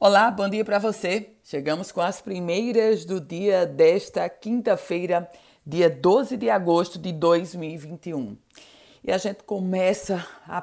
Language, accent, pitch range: Portuguese, Brazilian, 170-215 Hz